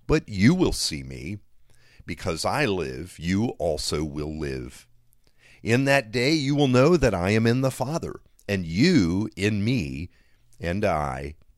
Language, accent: English, American